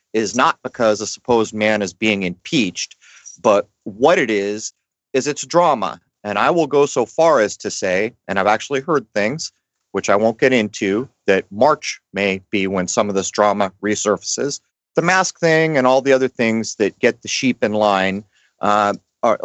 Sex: male